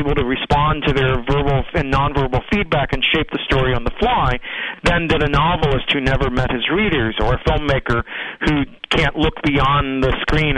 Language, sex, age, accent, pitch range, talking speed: English, male, 40-59, American, 130-160 Hz, 195 wpm